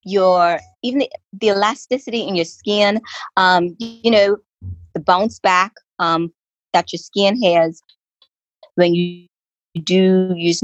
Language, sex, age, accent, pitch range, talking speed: English, female, 20-39, American, 165-190 Hz, 135 wpm